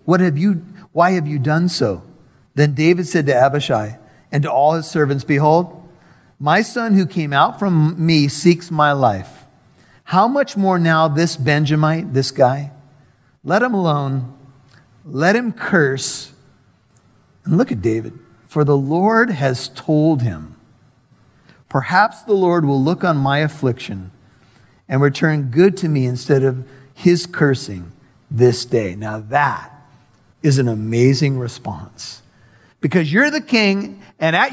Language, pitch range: English, 130-170 Hz